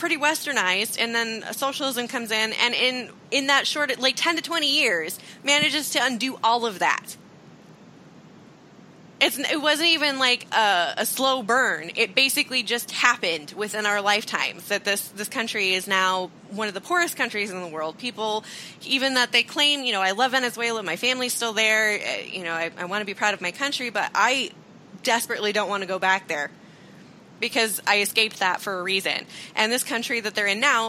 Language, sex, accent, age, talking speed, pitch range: English, female, American, 20-39, 195 wpm, 185-245 Hz